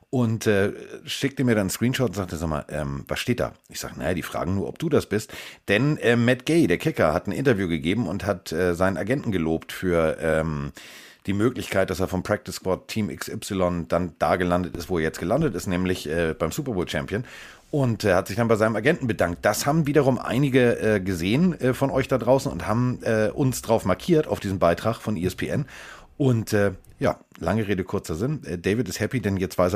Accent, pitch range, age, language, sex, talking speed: German, 90-125 Hz, 40-59, German, male, 225 wpm